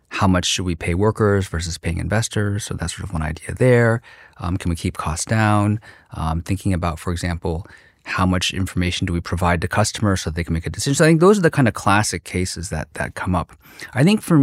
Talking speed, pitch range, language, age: 240 wpm, 85-105 Hz, English, 30-49